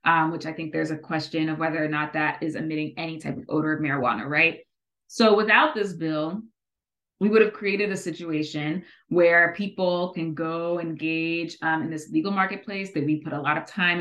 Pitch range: 155-185 Hz